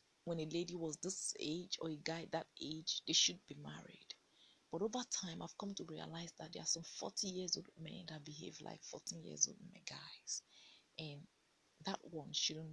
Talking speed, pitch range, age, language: 200 wpm, 160-190 Hz, 30-49, English